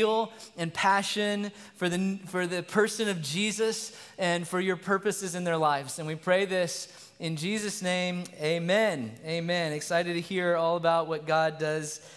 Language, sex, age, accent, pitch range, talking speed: English, male, 20-39, American, 175-205 Hz, 160 wpm